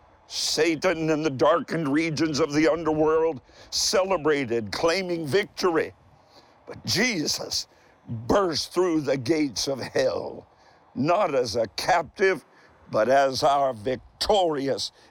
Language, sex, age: English, male, 60-79